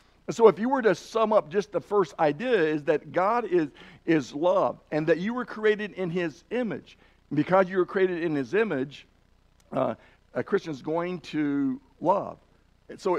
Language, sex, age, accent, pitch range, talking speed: English, male, 60-79, American, 150-205 Hz, 185 wpm